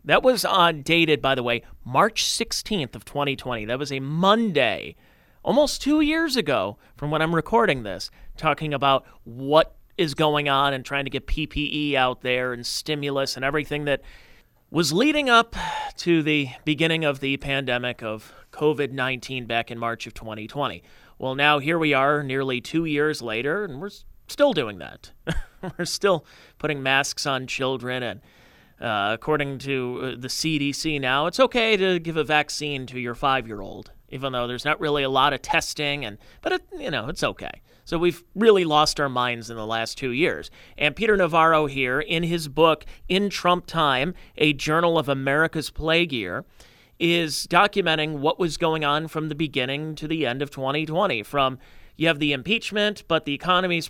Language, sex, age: English, male, 30-49